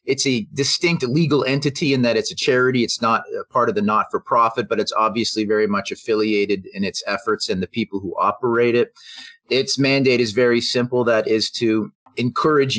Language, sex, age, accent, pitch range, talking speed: English, male, 30-49, American, 105-130 Hz, 190 wpm